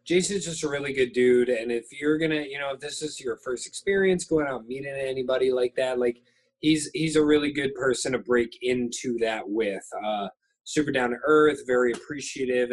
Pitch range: 130-160 Hz